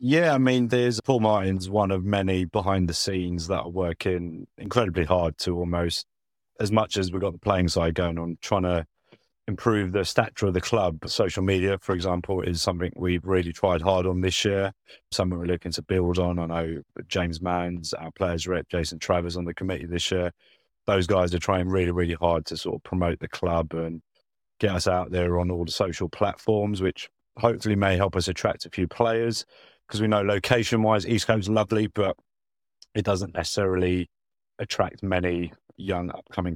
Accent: British